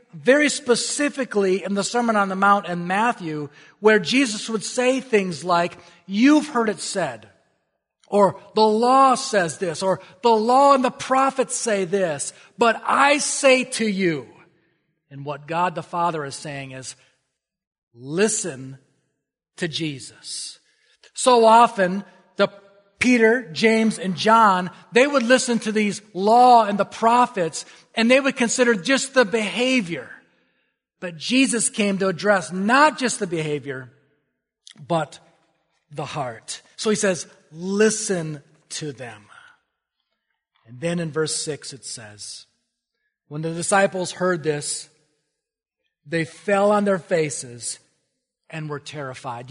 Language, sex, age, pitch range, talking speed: English, male, 40-59, 160-230 Hz, 135 wpm